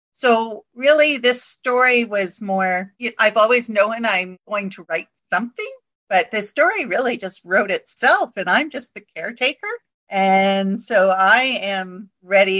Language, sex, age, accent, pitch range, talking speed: English, female, 40-59, American, 185-230 Hz, 150 wpm